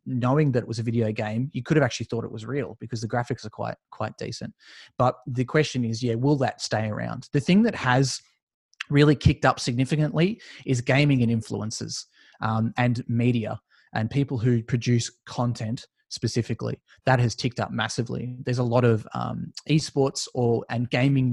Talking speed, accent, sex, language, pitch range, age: 185 wpm, Australian, male, English, 115-140 Hz, 20-39